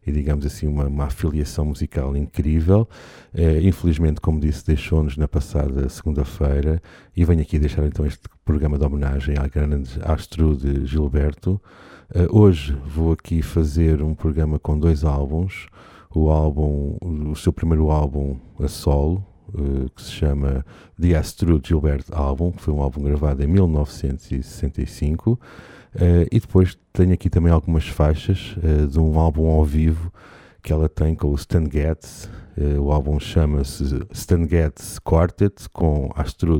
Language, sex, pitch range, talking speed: Portuguese, male, 75-85 Hz, 150 wpm